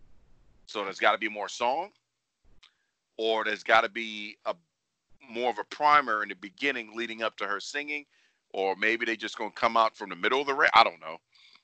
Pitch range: 100-140 Hz